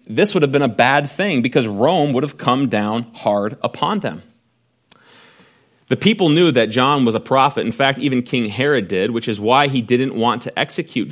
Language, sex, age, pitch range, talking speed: English, male, 30-49, 110-145 Hz, 205 wpm